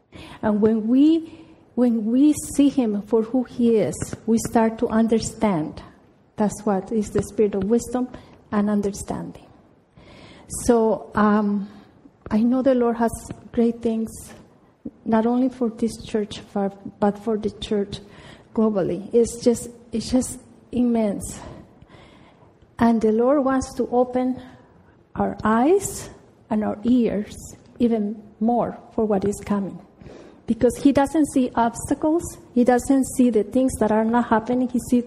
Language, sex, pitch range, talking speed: English, female, 220-255 Hz, 140 wpm